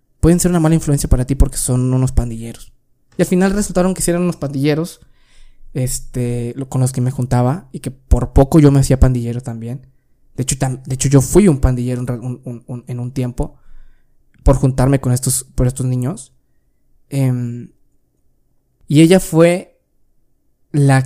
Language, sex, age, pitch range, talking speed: Spanish, male, 20-39, 130-165 Hz, 180 wpm